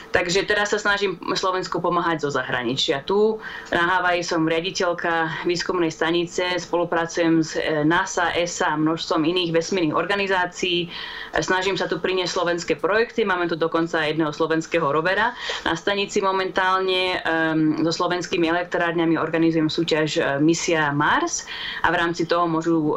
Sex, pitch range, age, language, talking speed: female, 160-185 Hz, 20-39, Slovak, 135 wpm